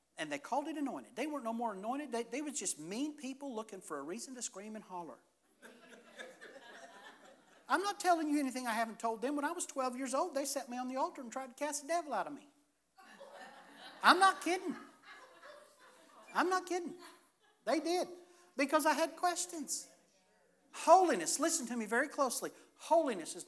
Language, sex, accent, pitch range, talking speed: English, male, American, 215-290 Hz, 190 wpm